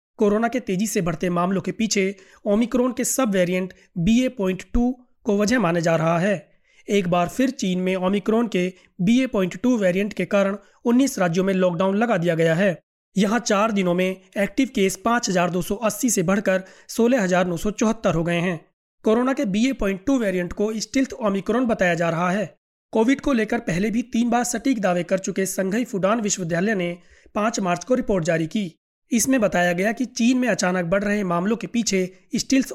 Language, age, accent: Hindi, 30-49, native